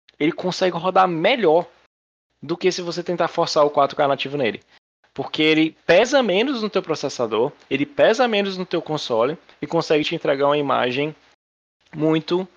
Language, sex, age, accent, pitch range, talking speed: Portuguese, male, 20-39, Brazilian, 125-180 Hz, 160 wpm